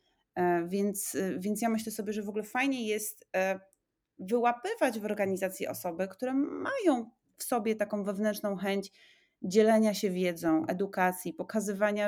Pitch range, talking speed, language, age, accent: 180-220 Hz, 130 wpm, Polish, 30-49, native